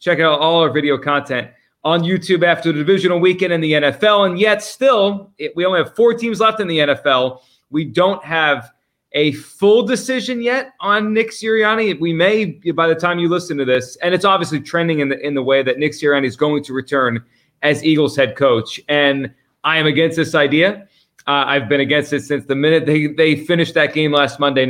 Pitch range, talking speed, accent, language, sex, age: 140-175 Hz, 210 wpm, American, English, male, 30-49